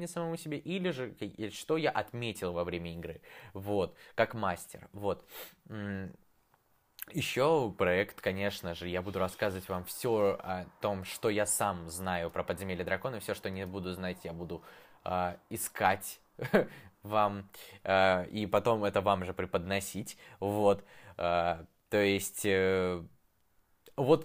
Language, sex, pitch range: Russian, male, 95-115 Hz